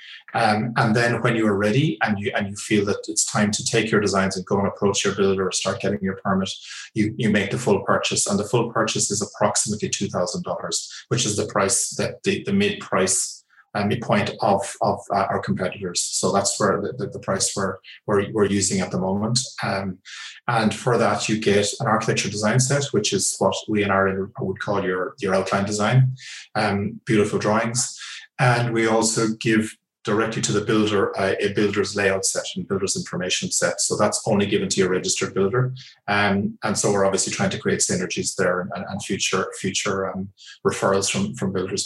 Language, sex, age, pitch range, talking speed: English, male, 20-39, 95-115 Hz, 205 wpm